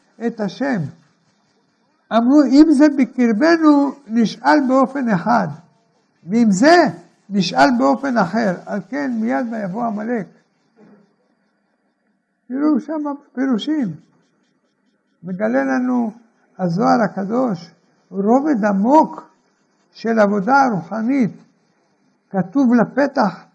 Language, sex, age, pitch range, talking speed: Hebrew, male, 60-79, 205-275 Hz, 85 wpm